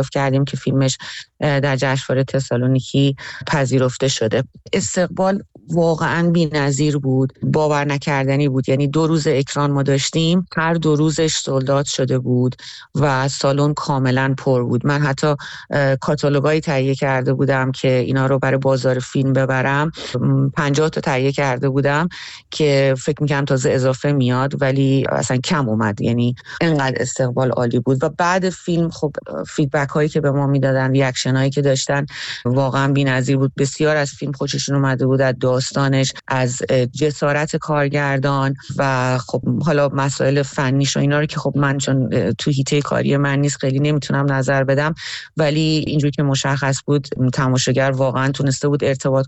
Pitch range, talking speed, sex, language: 130-150 Hz, 150 wpm, female, Persian